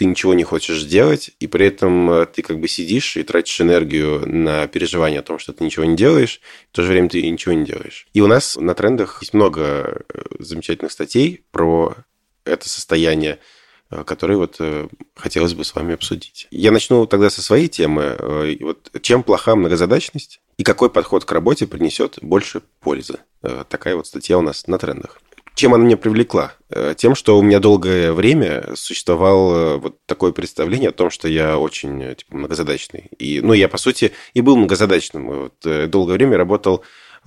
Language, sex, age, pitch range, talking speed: Russian, male, 20-39, 80-105 Hz, 180 wpm